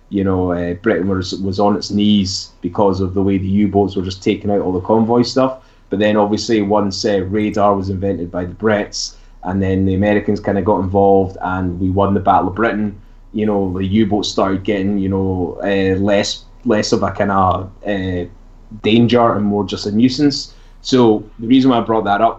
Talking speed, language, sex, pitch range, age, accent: 210 wpm, English, male, 95-115 Hz, 10-29, British